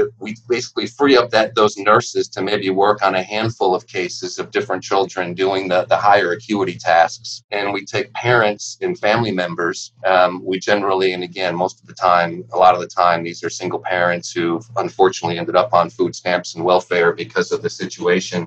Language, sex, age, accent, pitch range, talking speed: English, male, 30-49, American, 90-120 Hz, 200 wpm